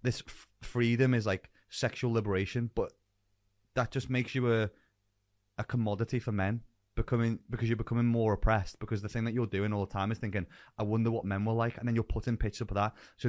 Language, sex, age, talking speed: English, male, 20-39, 215 wpm